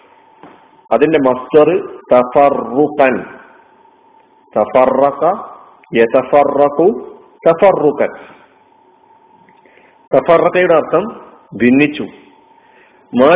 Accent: native